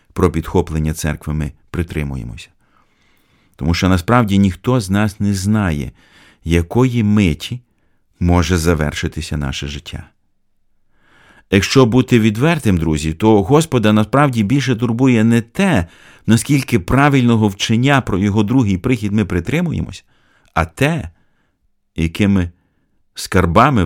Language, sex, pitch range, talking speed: Ukrainian, male, 85-115 Hz, 110 wpm